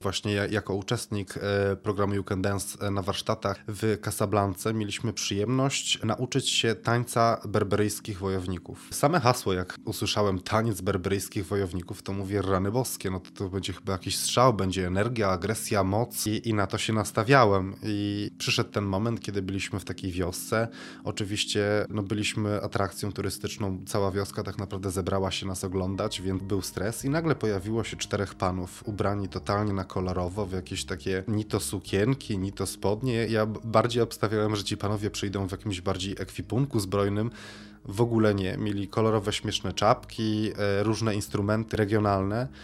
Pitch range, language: 100-110 Hz, Polish